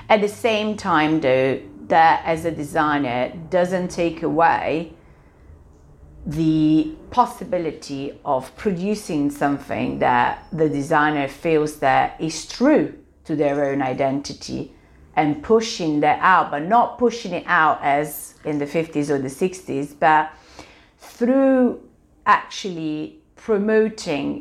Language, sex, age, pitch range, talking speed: Italian, female, 50-69, 145-180 Hz, 120 wpm